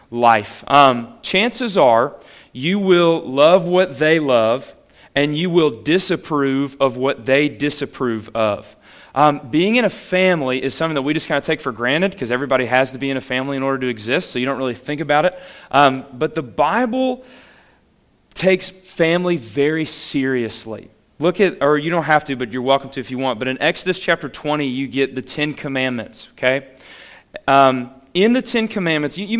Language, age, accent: English, 30-49, American